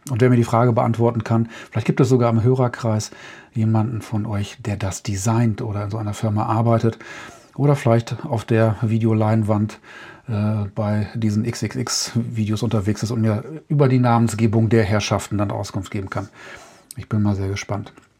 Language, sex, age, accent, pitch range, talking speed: German, male, 40-59, German, 110-130 Hz, 170 wpm